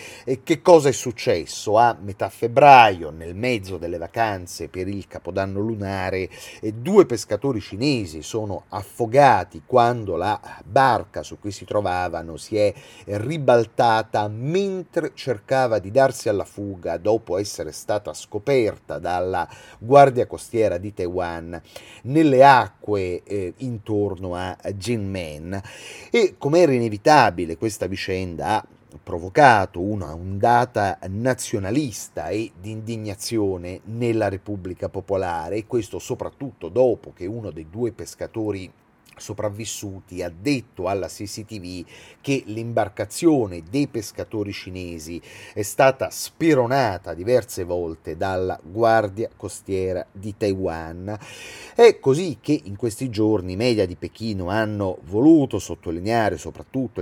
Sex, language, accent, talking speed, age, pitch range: male, Italian, native, 115 wpm, 30-49, 95-120 Hz